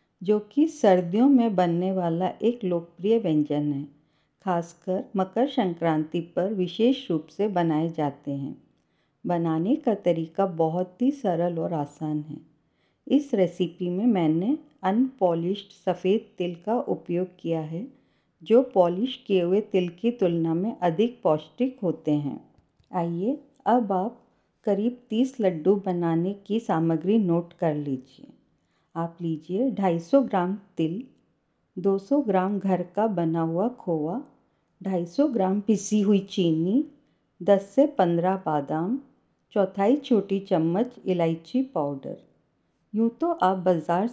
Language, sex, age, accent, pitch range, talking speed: Hindi, female, 50-69, native, 170-220 Hz, 130 wpm